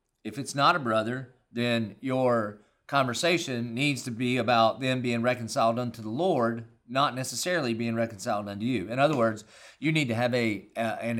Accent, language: American, English